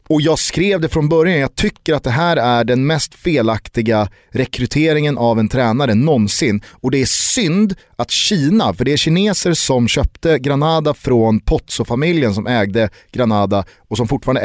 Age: 30-49